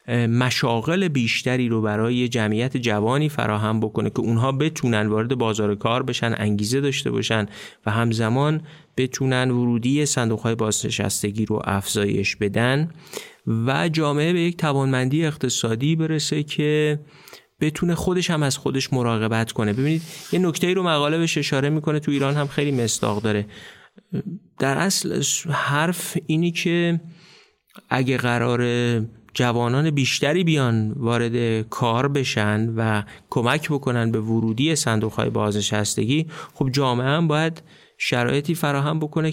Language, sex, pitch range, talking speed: Persian, male, 110-150 Hz, 125 wpm